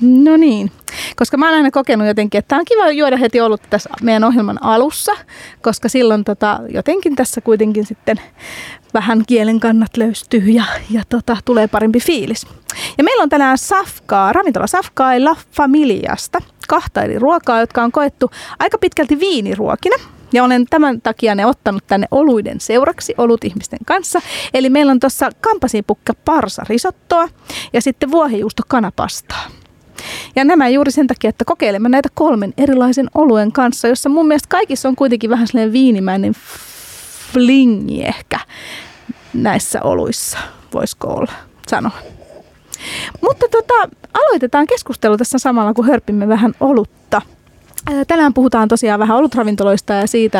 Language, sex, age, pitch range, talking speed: Finnish, female, 30-49, 225-290 Hz, 140 wpm